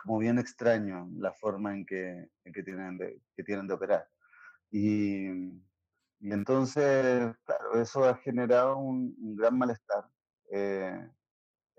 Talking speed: 135 wpm